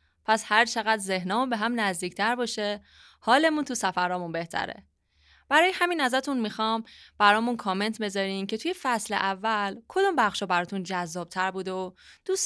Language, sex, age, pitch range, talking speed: Persian, female, 20-39, 180-225 Hz, 145 wpm